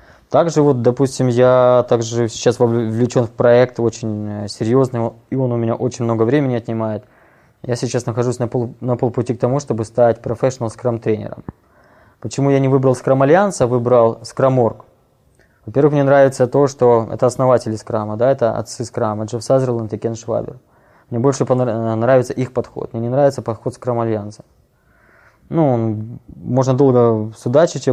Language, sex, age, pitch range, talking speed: Ukrainian, male, 20-39, 115-130 Hz, 155 wpm